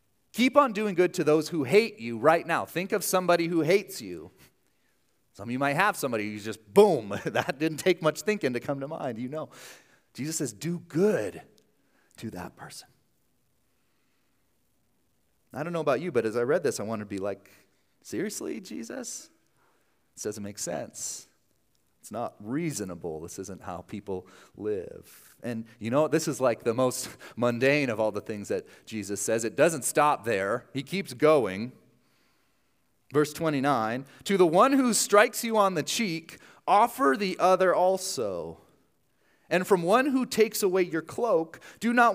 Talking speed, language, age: 170 wpm, English, 30-49